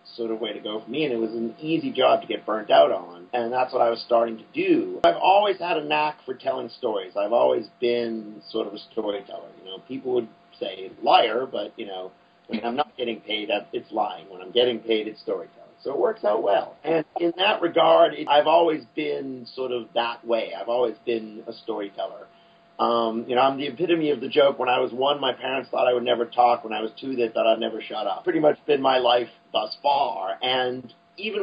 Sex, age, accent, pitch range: male, 40-59, American, 115-155 Hz